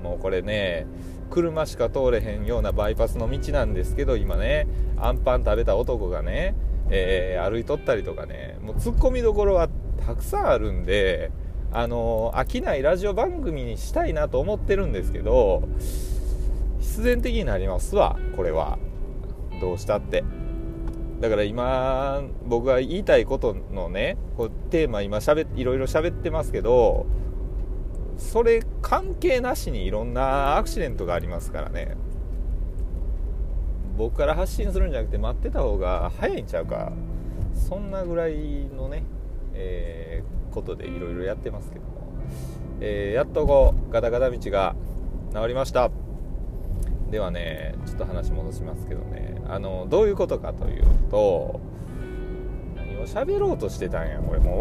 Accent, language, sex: native, Japanese, male